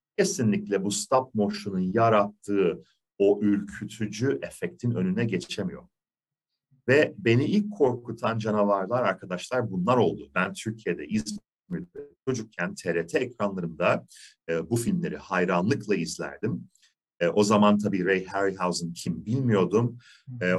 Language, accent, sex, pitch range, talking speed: Turkish, native, male, 100-145 Hz, 110 wpm